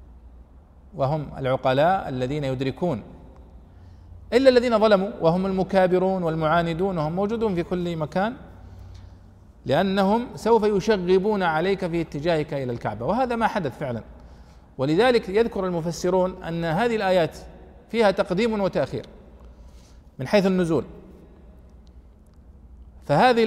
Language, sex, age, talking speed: Arabic, male, 40-59, 100 wpm